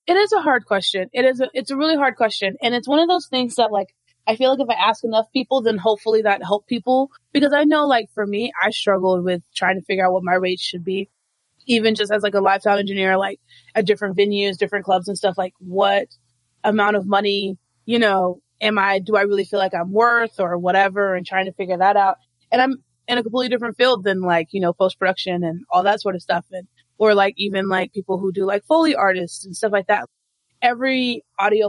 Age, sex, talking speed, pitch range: 20-39, female, 240 wpm, 190-245 Hz